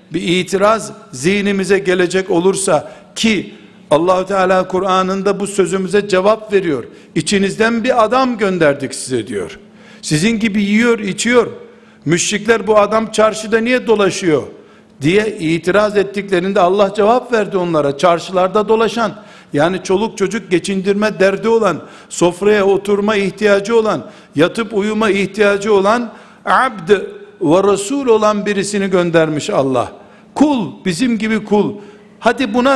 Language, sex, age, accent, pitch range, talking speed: Turkish, male, 60-79, native, 190-220 Hz, 120 wpm